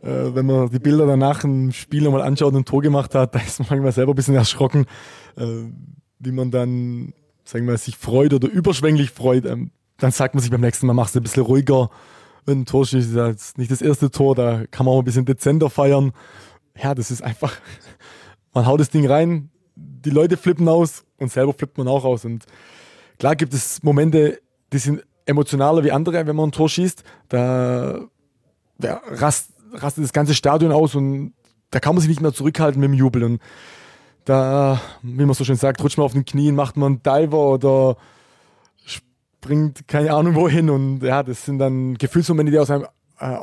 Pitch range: 125-145 Hz